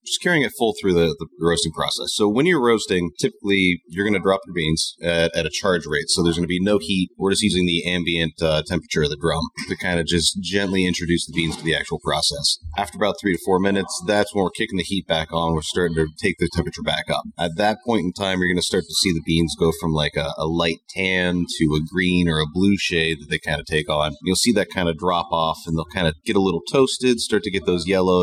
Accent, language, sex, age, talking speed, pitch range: American, English, male, 30-49, 275 wpm, 85-95 Hz